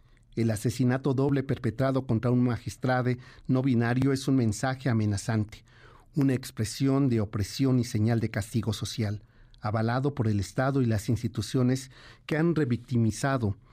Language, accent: Spanish, Mexican